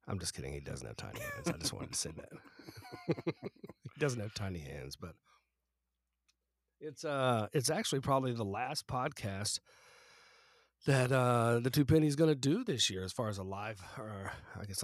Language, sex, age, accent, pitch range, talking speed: English, male, 40-59, American, 90-120 Hz, 185 wpm